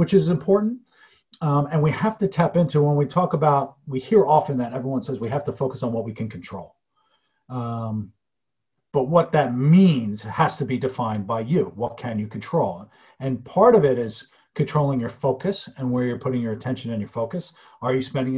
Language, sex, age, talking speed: English, male, 40-59, 210 wpm